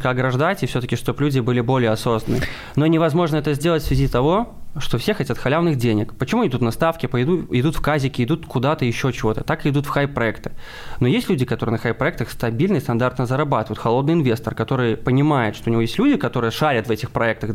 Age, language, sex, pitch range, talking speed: 20-39, Russian, male, 115-145 Hz, 215 wpm